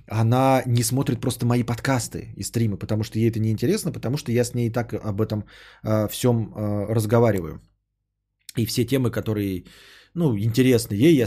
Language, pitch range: Bulgarian, 105-130 Hz